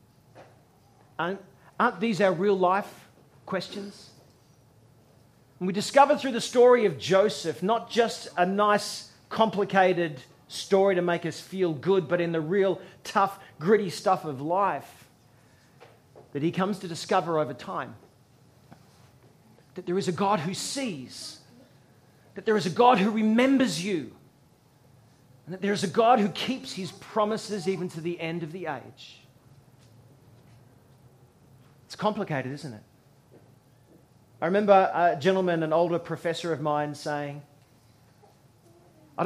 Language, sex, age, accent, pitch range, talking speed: English, male, 40-59, Australian, 140-205 Hz, 135 wpm